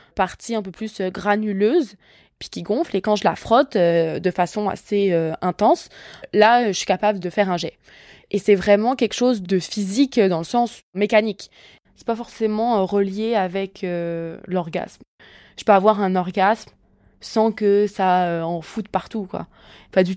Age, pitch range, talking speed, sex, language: 20-39, 185-225 Hz, 180 wpm, female, French